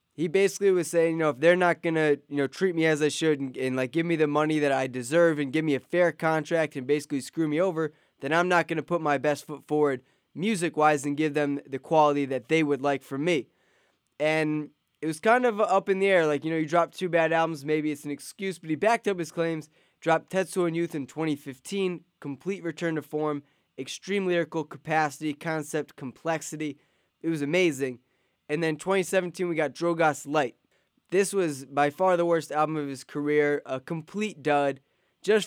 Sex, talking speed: male, 215 wpm